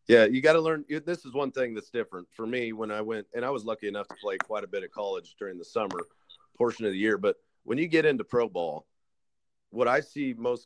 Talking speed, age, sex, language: 260 wpm, 40-59, male, English